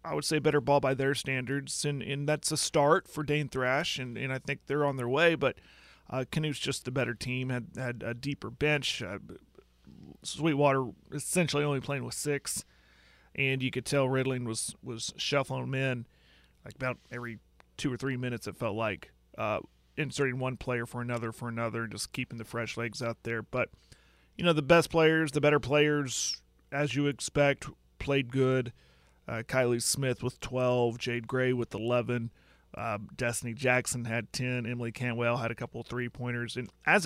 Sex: male